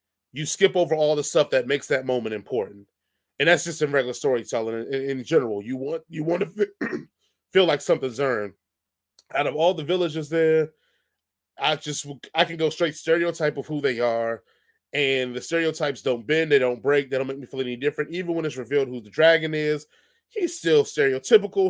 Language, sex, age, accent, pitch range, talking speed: English, male, 20-39, American, 135-175 Hz, 200 wpm